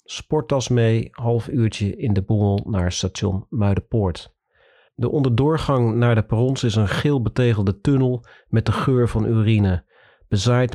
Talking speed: 145 wpm